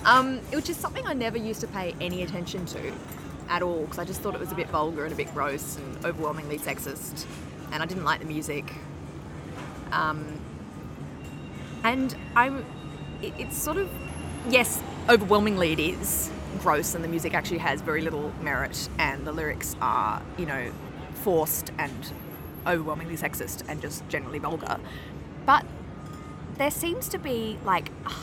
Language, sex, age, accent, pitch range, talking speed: English, female, 20-39, Australian, 155-215 Hz, 160 wpm